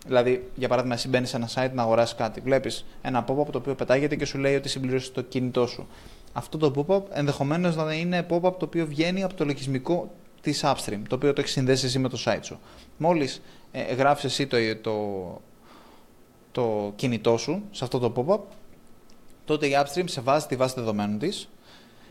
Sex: male